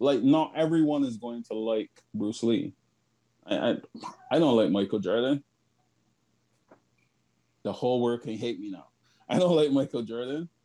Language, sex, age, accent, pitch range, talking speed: English, male, 20-39, American, 115-140 Hz, 160 wpm